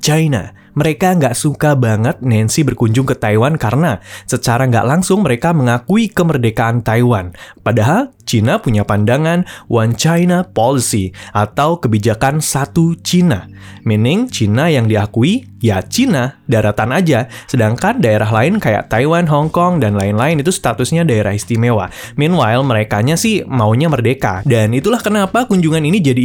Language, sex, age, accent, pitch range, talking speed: Indonesian, male, 20-39, native, 115-165 Hz, 135 wpm